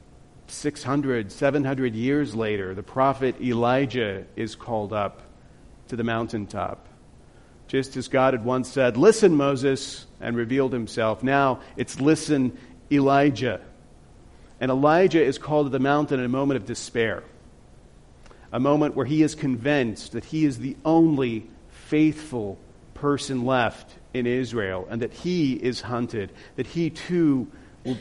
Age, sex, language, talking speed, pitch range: 40-59, male, English, 140 wpm, 110-140 Hz